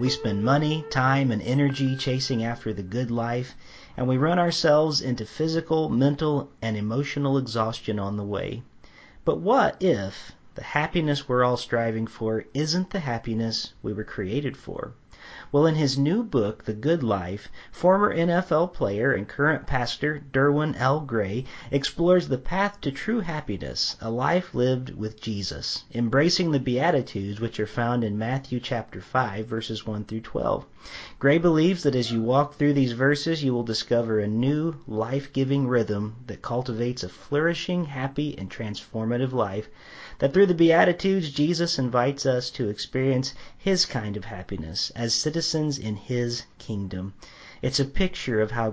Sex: male